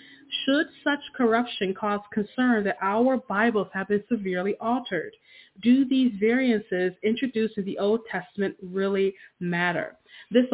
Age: 30-49